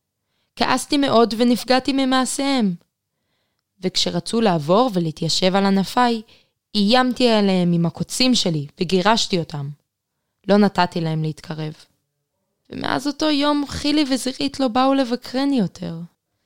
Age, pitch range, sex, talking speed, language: 20-39, 175-245 Hz, female, 105 wpm, Hebrew